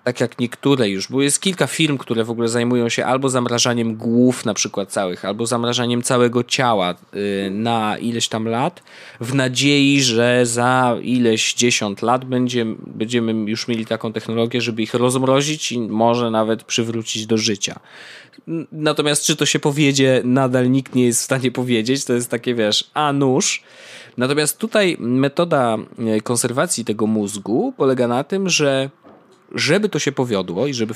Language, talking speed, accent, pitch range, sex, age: Polish, 160 wpm, native, 115-135 Hz, male, 20-39